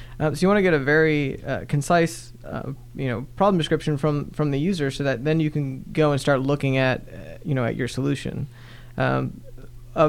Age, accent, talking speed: 20-39, American, 220 wpm